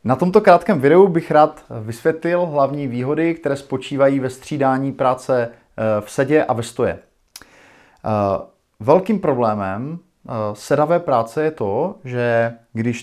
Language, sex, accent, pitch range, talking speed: Czech, male, native, 120-140 Hz, 125 wpm